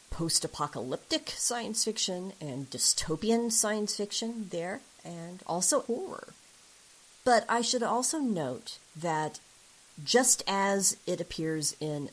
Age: 40-59